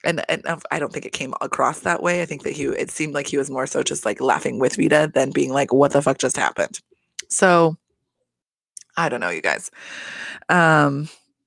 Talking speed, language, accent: 215 wpm, English, American